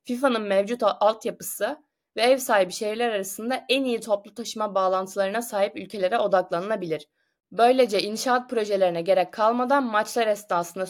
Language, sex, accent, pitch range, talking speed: Turkish, female, native, 190-245 Hz, 125 wpm